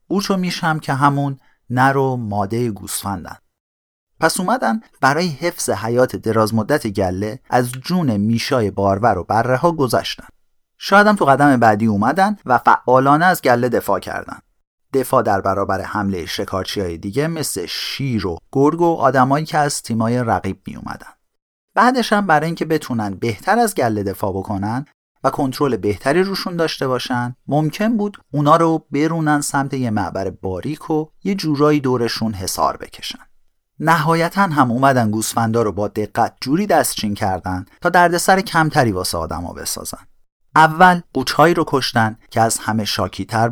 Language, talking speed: Persian, 145 wpm